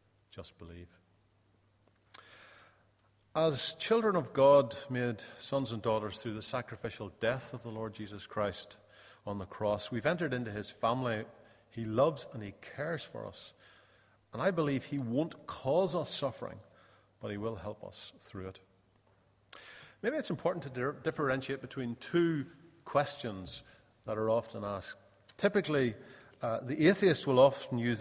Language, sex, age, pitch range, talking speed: English, male, 40-59, 105-130 Hz, 145 wpm